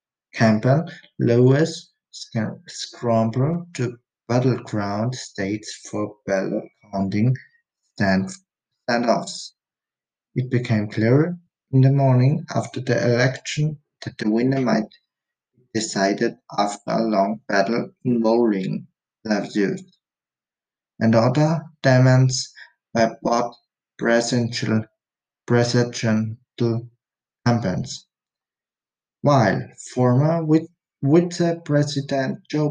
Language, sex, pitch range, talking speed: German, male, 110-150 Hz, 85 wpm